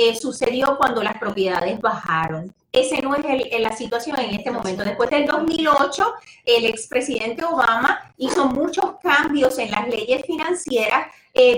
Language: Spanish